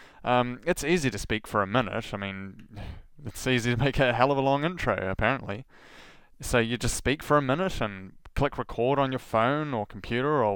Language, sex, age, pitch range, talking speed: English, male, 20-39, 110-140 Hz, 210 wpm